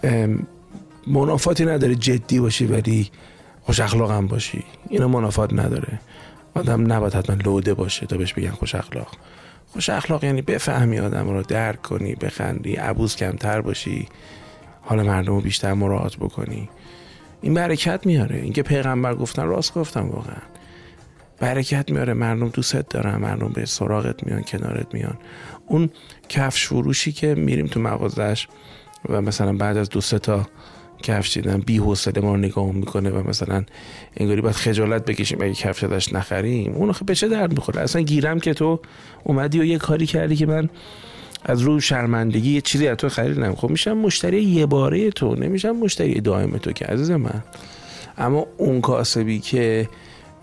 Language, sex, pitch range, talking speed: Persian, male, 105-145 Hz, 160 wpm